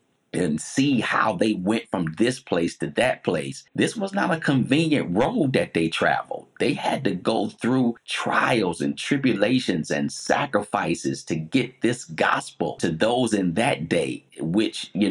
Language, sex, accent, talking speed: English, male, American, 165 wpm